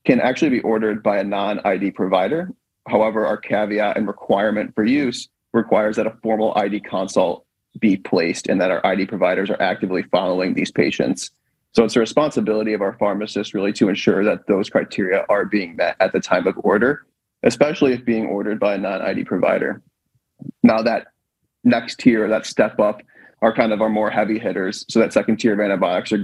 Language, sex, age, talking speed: English, male, 30-49, 190 wpm